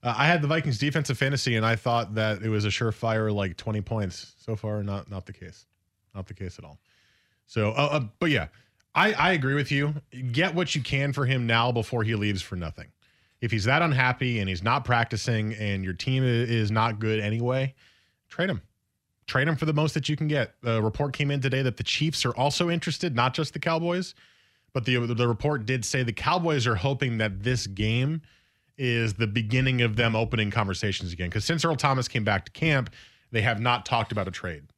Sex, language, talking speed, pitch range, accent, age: male, English, 220 wpm, 105-135 Hz, American, 20-39